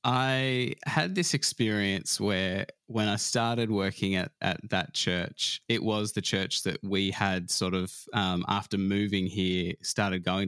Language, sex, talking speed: English, male, 160 wpm